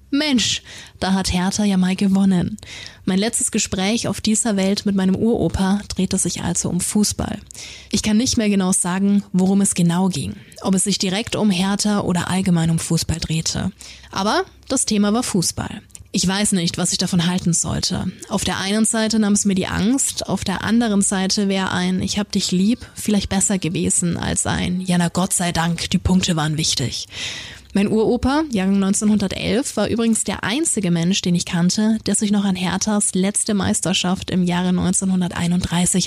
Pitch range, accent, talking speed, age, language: 180-210 Hz, German, 185 wpm, 20-39, German